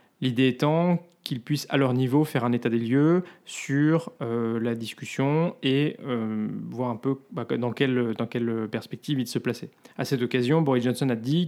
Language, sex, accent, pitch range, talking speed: French, male, French, 120-150 Hz, 190 wpm